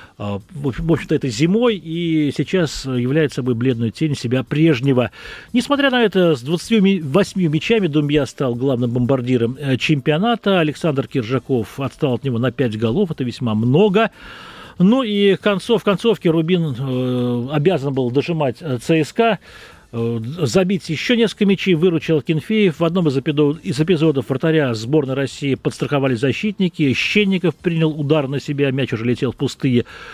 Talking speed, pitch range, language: 140 wpm, 130-180 Hz, Russian